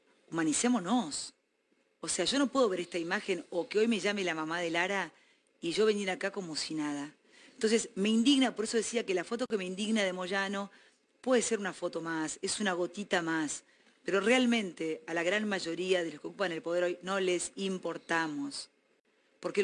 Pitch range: 185-255 Hz